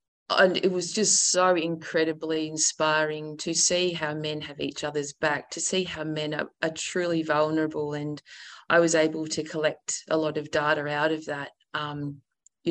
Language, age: English, 30-49